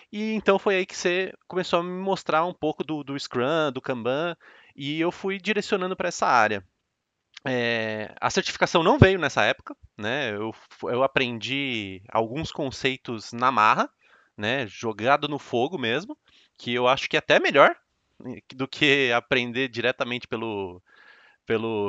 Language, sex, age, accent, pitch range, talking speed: Portuguese, male, 20-39, Brazilian, 115-160 Hz, 150 wpm